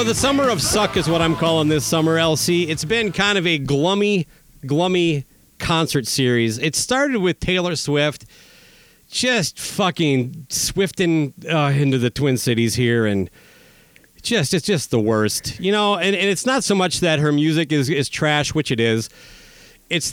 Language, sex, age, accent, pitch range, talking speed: English, male, 40-59, American, 135-200 Hz, 175 wpm